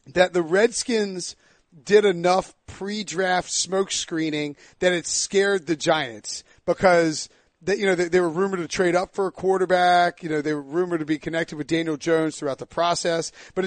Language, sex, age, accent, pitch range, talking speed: English, male, 40-59, American, 155-195 Hz, 185 wpm